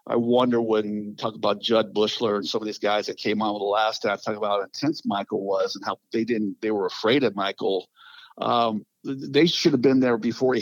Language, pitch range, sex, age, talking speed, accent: English, 110-140 Hz, male, 50-69, 235 wpm, American